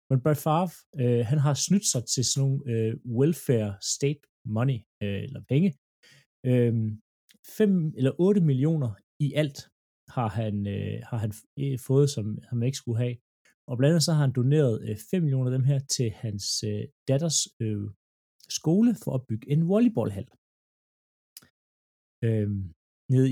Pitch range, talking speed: 105-140 Hz, 160 wpm